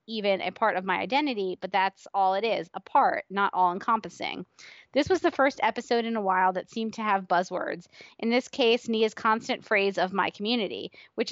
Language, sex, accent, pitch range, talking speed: English, female, American, 195-250 Hz, 205 wpm